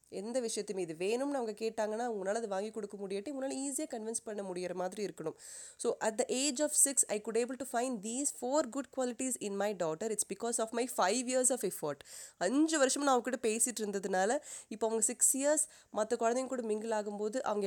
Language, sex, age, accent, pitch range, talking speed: Tamil, female, 20-39, native, 195-250 Hz, 205 wpm